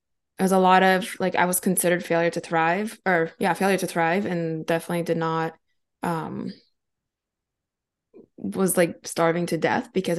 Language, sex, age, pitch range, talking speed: English, female, 20-39, 165-205 Hz, 165 wpm